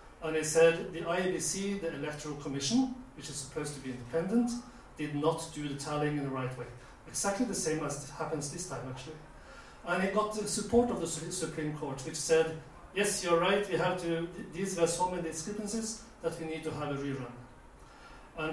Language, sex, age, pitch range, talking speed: English, male, 40-59, 145-175 Hz, 200 wpm